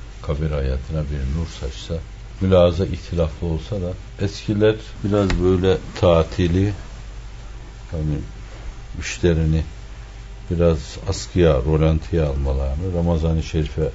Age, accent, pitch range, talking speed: 60-79, native, 75-95 Hz, 90 wpm